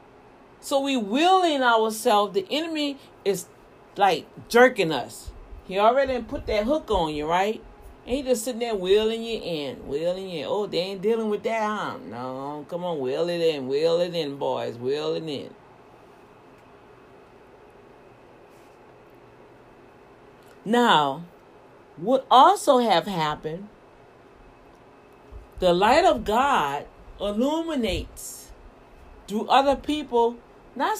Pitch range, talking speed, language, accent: 200-260 Hz, 120 wpm, English, American